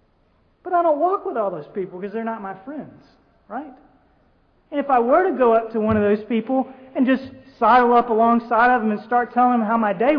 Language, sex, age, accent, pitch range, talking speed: English, male, 30-49, American, 170-235 Hz, 230 wpm